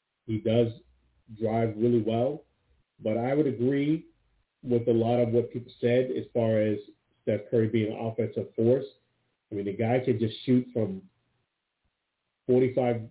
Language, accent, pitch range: English, American, 115-140 Hz